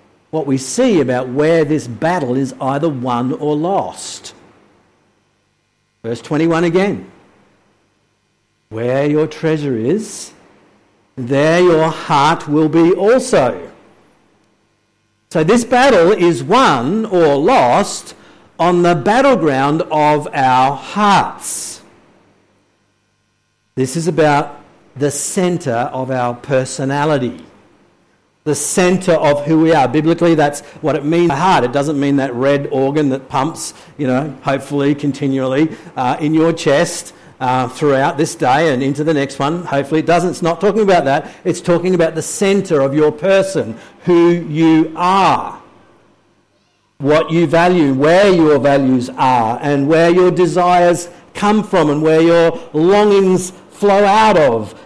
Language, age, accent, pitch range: English, 50-69, Australian, 135-170 Hz